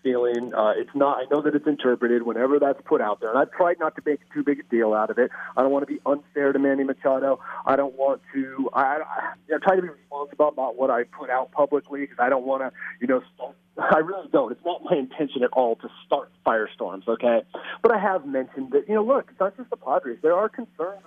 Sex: male